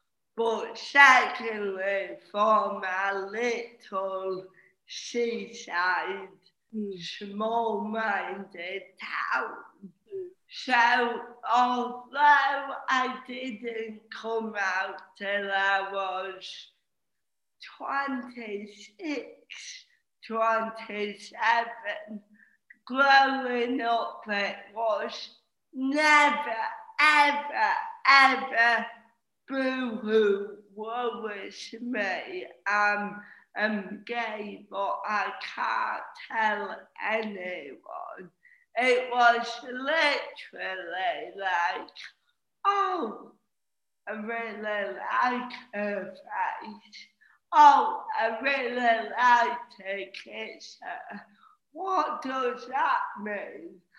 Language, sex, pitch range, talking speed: English, female, 210-275 Hz, 65 wpm